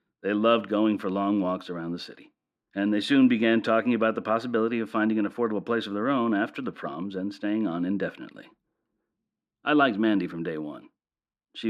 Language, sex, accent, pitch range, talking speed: English, male, American, 90-110 Hz, 200 wpm